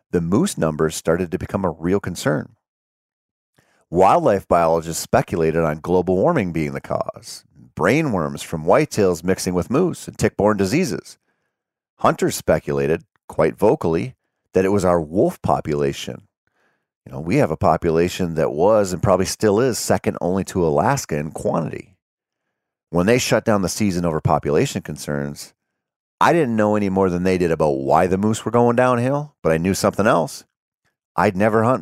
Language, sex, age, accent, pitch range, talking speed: English, male, 40-59, American, 80-110 Hz, 165 wpm